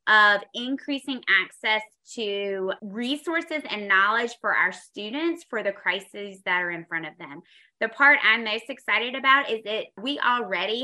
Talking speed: 160 wpm